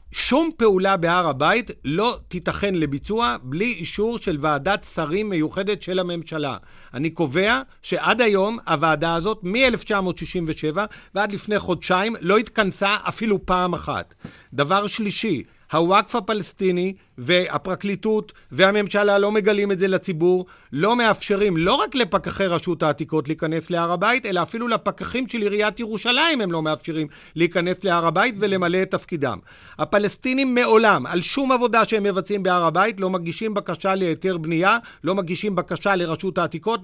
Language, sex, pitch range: Hebrew, male, 170-215 Hz